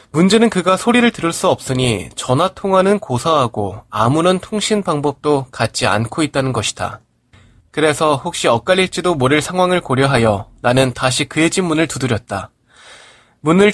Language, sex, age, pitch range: Korean, male, 20-39, 120-170 Hz